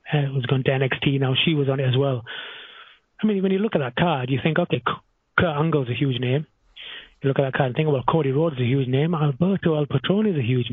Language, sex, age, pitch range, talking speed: English, male, 30-49, 130-165 Hz, 255 wpm